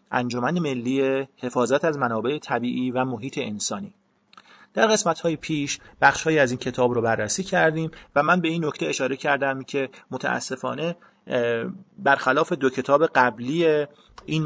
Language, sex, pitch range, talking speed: Persian, male, 125-160 Hz, 140 wpm